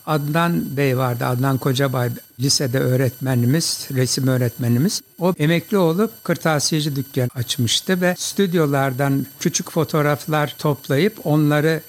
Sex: male